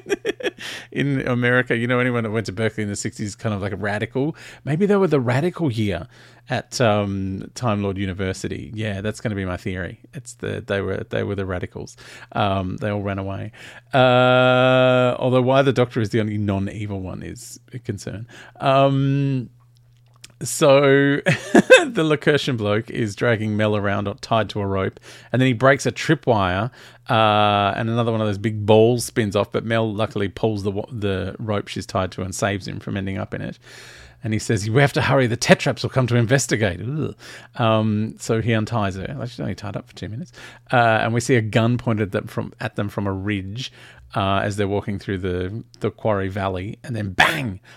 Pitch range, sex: 105-135 Hz, male